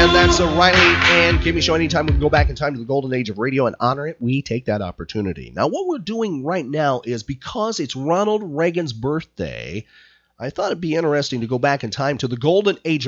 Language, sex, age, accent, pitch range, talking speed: English, male, 40-59, American, 95-145 Hz, 240 wpm